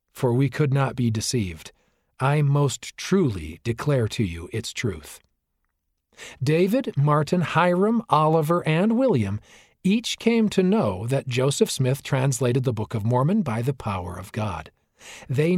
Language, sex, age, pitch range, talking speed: English, male, 50-69, 120-175 Hz, 145 wpm